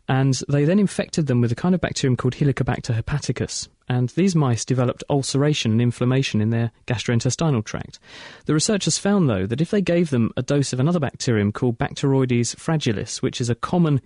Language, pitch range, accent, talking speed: English, 120-155 Hz, British, 190 wpm